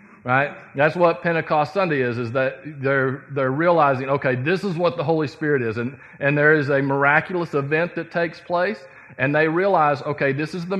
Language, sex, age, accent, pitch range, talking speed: English, male, 40-59, American, 130-160 Hz, 200 wpm